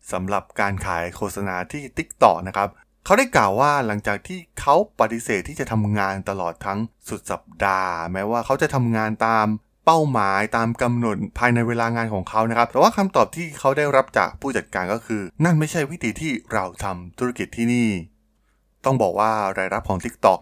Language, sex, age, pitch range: Thai, male, 20-39, 100-125 Hz